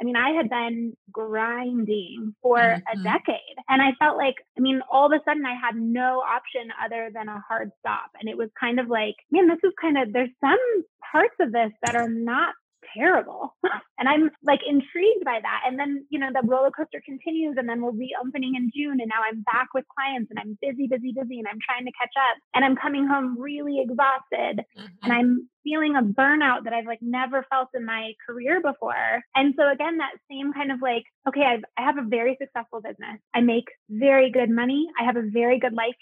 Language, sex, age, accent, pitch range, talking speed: English, female, 20-39, American, 235-280 Hz, 220 wpm